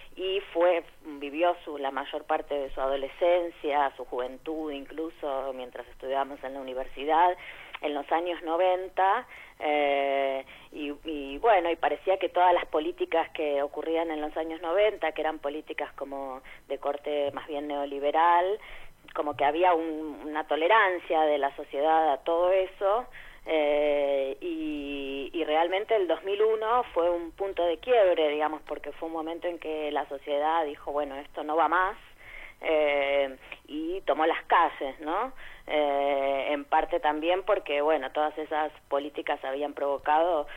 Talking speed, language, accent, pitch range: 150 wpm, Spanish, Argentinian, 145-175 Hz